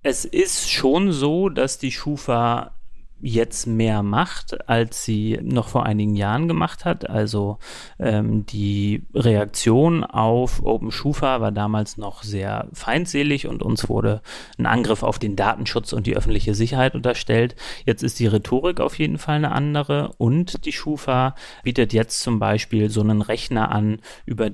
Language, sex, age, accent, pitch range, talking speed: German, male, 30-49, German, 105-130 Hz, 155 wpm